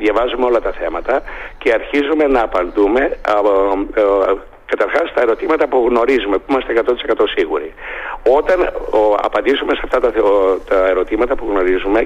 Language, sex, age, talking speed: Greek, male, 60-79, 155 wpm